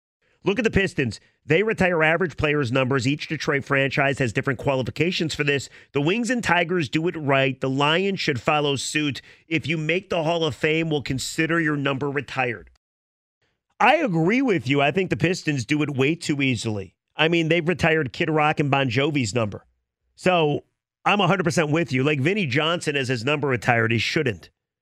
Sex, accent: male, American